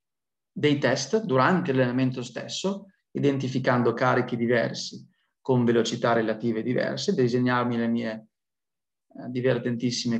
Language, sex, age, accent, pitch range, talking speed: Italian, male, 20-39, native, 120-145 Hz, 100 wpm